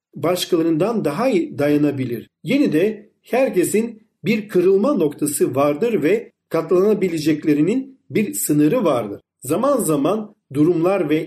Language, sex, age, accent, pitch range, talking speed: Turkish, male, 40-59, native, 150-210 Hz, 100 wpm